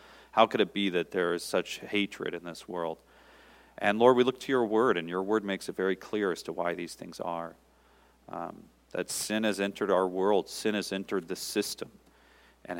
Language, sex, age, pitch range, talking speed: English, male, 40-59, 90-105 Hz, 210 wpm